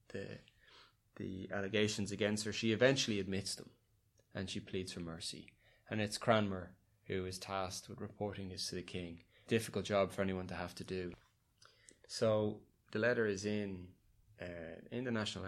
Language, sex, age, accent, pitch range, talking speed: English, male, 20-39, Irish, 95-110 Hz, 165 wpm